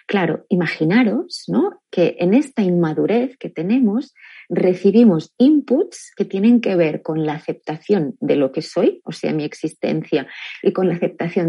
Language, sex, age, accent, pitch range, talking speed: Spanish, female, 30-49, Spanish, 170-240 Hz, 155 wpm